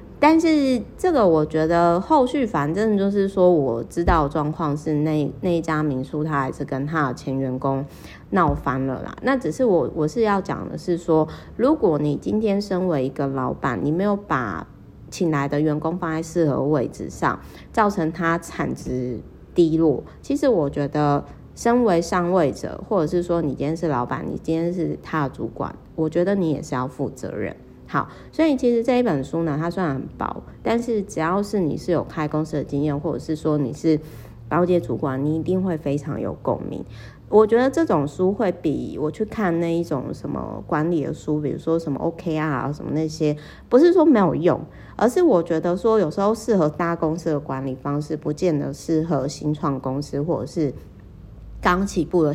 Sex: female